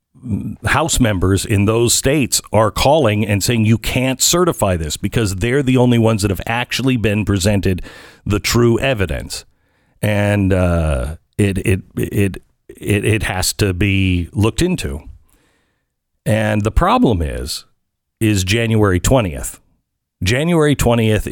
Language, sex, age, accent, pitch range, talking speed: English, male, 50-69, American, 95-120 Hz, 130 wpm